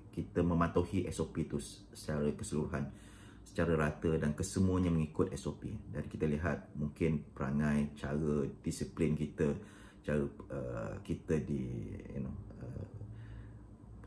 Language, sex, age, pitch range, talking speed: Malay, male, 30-49, 75-100 Hz, 110 wpm